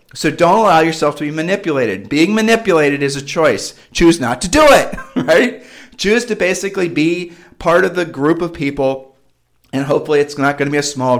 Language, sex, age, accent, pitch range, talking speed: English, male, 40-59, American, 135-165 Hz, 200 wpm